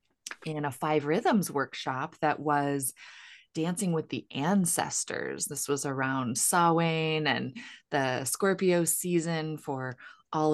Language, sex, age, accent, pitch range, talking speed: English, female, 20-39, American, 145-175 Hz, 120 wpm